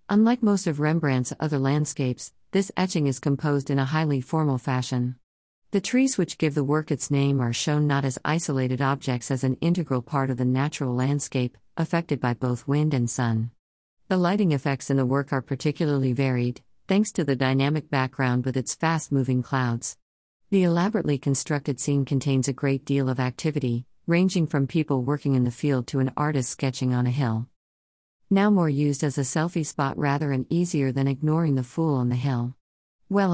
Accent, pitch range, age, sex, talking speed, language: American, 125-165 Hz, 50-69, female, 185 wpm, English